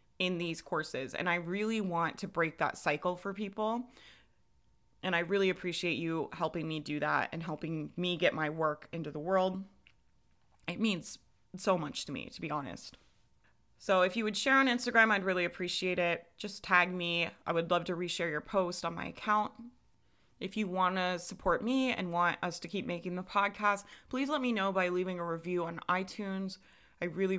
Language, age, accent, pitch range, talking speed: English, 20-39, American, 170-205 Hz, 195 wpm